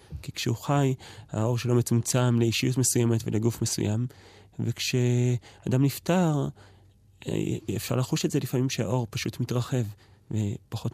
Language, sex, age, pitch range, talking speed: Hebrew, male, 30-49, 110-125 Hz, 115 wpm